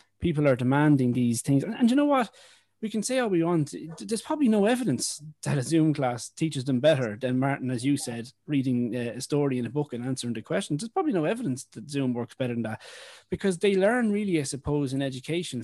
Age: 20-39